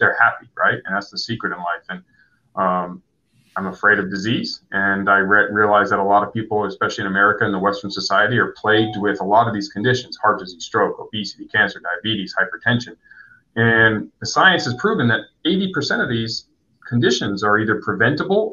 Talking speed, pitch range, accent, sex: 190 wpm, 100-120 Hz, American, male